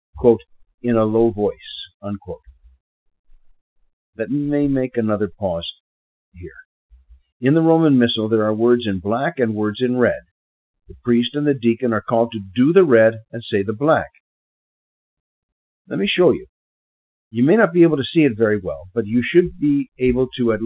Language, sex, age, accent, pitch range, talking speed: English, male, 50-69, American, 95-135 Hz, 175 wpm